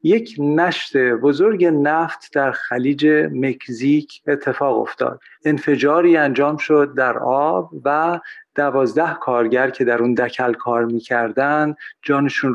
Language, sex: Persian, male